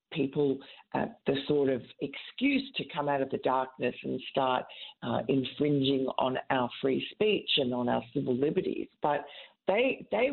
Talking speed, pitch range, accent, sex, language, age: 165 wpm, 135-155 Hz, Australian, female, English, 50-69